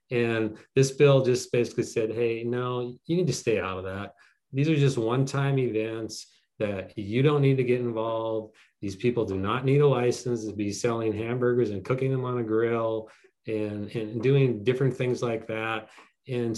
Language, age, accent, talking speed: English, 30-49, American, 190 wpm